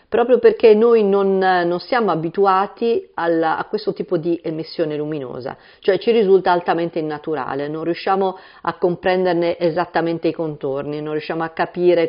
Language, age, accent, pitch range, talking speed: Italian, 50-69, native, 155-200 Hz, 145 wpm